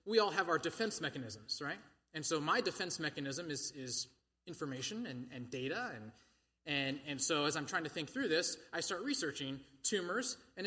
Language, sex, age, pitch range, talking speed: English, male, 20-39, 130-170 Hz, 185 wpm